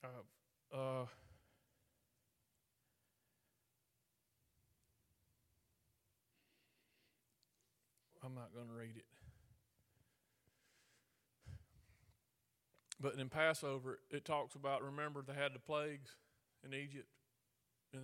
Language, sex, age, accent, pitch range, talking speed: English, male, 40-59, American, 125-150 Hz, 70 wpm